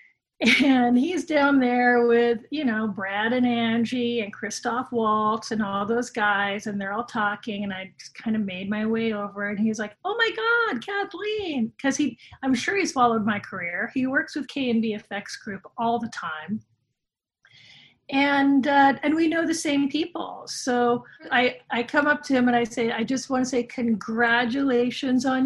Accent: American